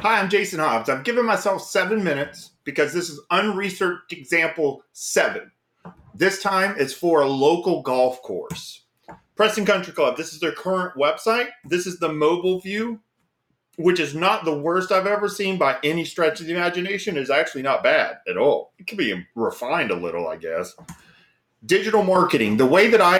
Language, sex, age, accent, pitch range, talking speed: English, male, 40-59, American, 155-210 Hz, 185 wpm